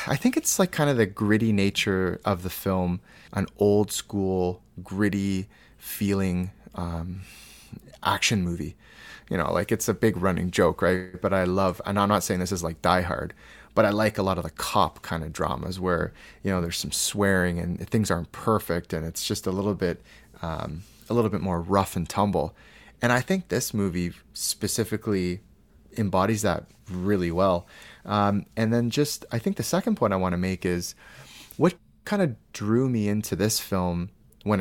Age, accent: 30-49, American